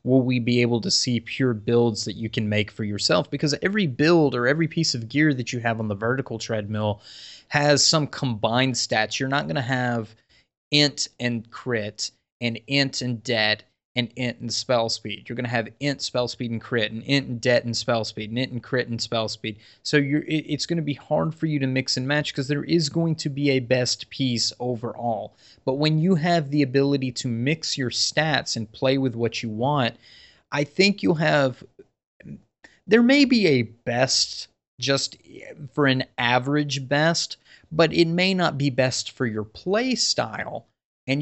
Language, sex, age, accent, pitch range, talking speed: English, male, 20-39, American, 115-145 Hz, 200 wpm